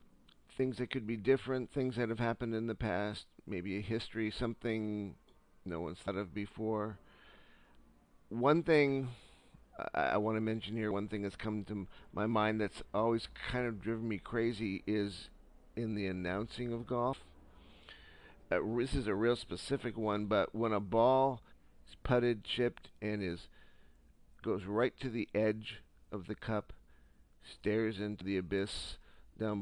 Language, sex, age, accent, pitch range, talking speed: English, male, 50-69, American, 95-115 Hz, 160 wpm